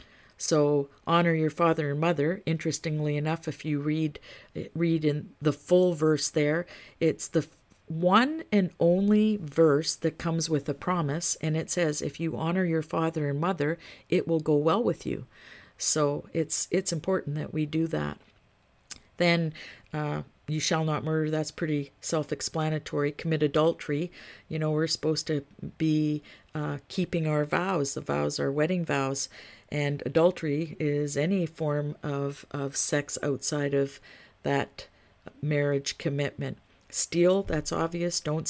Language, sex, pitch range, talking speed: English, female, 145-170 Hz, 150 wpm